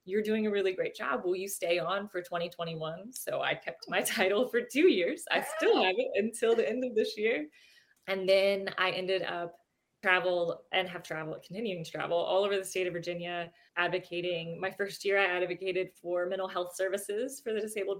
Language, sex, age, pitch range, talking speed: English, female, 20-39, 165-190 Hz, 205 wpm